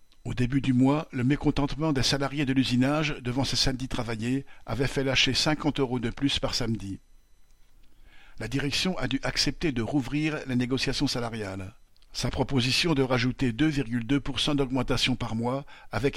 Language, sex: French, male